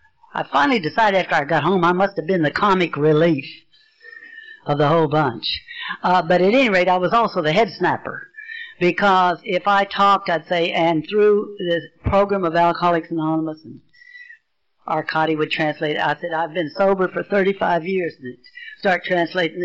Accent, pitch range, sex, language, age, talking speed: American, 165-225 Hz, female, English, 60-79, 175 wpm